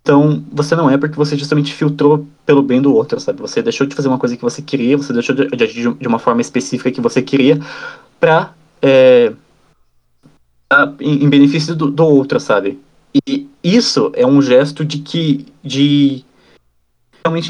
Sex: male